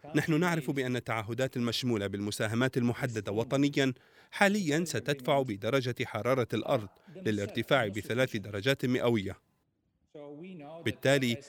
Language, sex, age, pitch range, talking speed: Arabic, male, 40-59, 110-140 Hz, 95 wpm